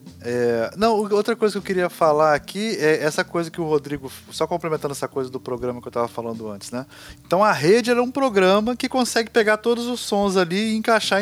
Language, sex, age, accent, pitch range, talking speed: Portuguese, male, 20-39, Brazilian, 135-185 Hz, 225 wpm